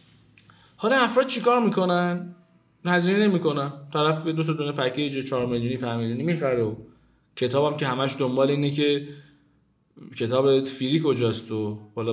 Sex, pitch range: male, 130-170 Hz